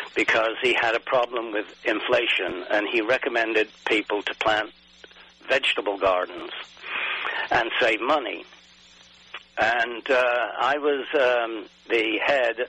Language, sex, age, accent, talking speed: English, male, 60-79, British, 120 wpm